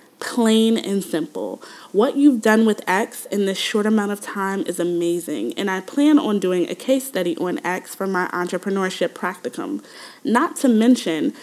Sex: female